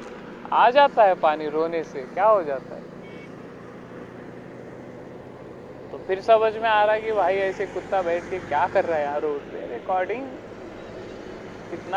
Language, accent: Marathi, native